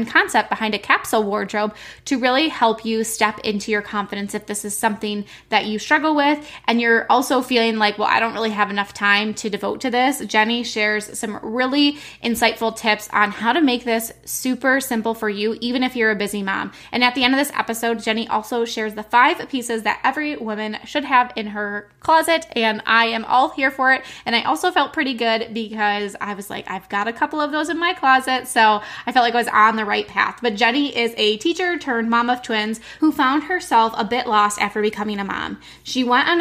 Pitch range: 215-255 Hz